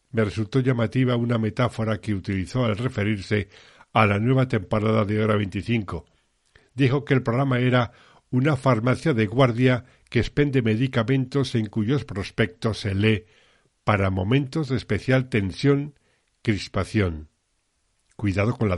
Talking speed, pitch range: 130 wpm, 95-125 Hz